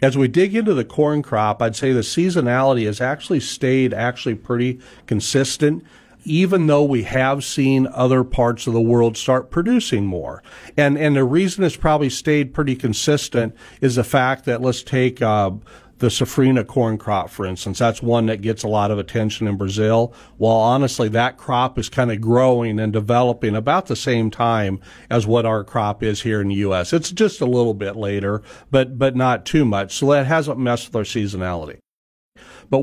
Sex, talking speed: male, 190 wpm